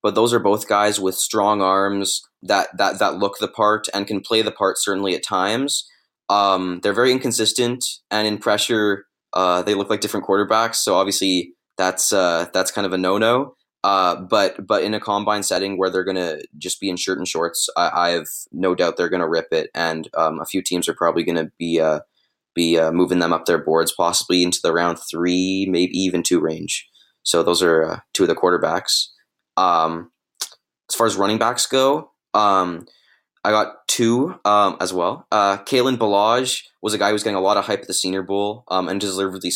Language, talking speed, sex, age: English, 210 wpm, male, 20-39